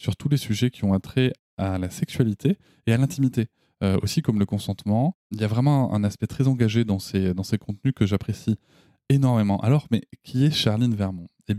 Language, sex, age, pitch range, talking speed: French, male, 20-39, 100-130 Hz, 220 wpm